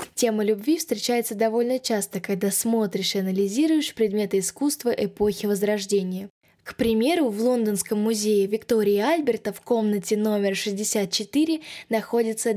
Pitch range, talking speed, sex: 200-235 Hz, 120 wpm, female